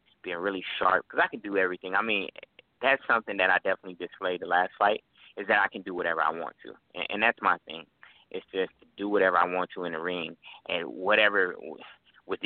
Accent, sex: American, male